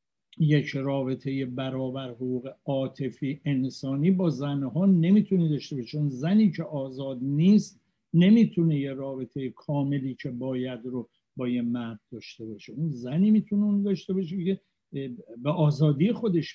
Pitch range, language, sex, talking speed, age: 125-170 Hz, Persian, male, 135 wpm, 50-69